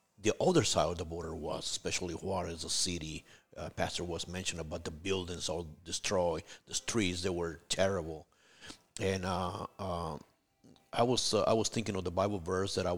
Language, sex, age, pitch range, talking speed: English, male, 50-69, 90-115 Hz, 185 wpm